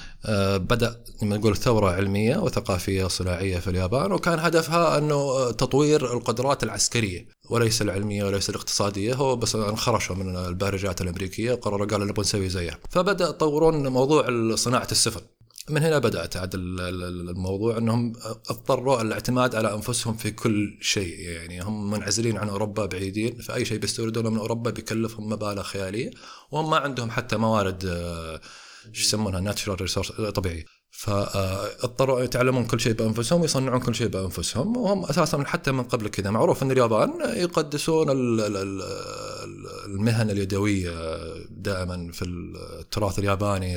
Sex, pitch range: male, 95-120 Hz